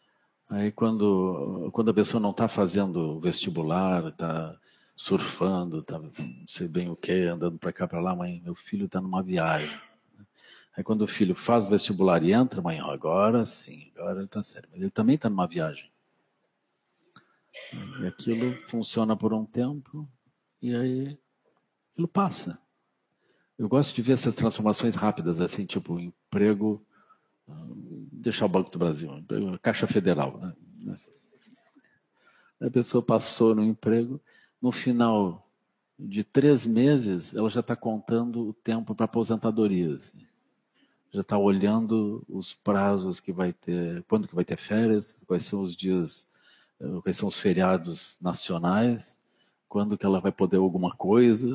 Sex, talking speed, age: male, 150 wpm, 50-69